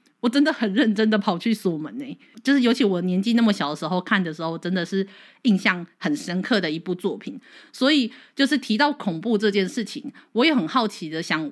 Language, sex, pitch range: Chinese, female, 180-240 Hz